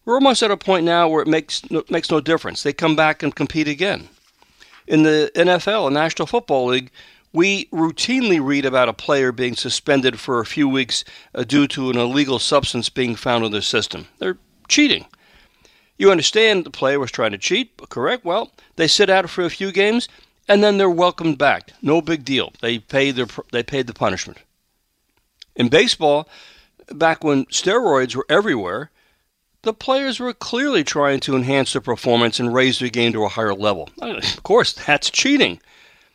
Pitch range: 135-195 Hz